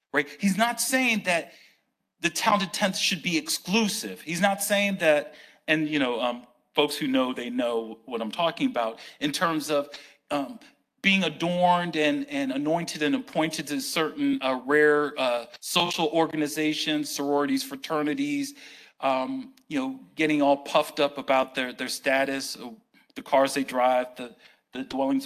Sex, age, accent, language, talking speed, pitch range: male, 40-59, American, English, 155 wpm, 145-215 Hz